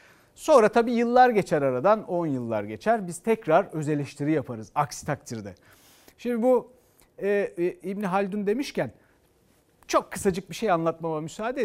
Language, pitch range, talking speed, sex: Turkish, 150-225 Hz, 140 wpm, male